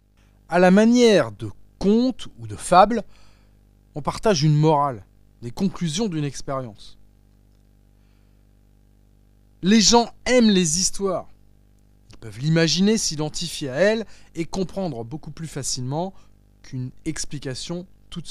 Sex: male